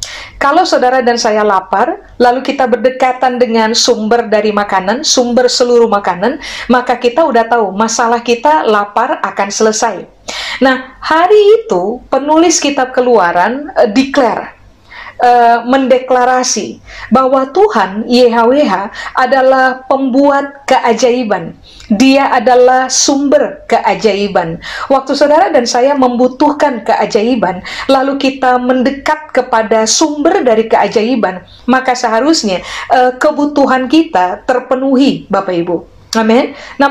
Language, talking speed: Indonesian, 110 wpm